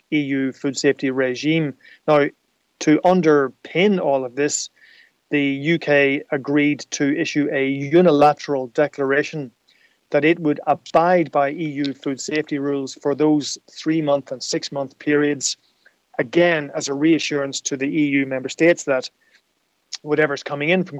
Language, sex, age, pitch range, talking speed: English, male, 30-49, 135-150 Hz, 135 wpm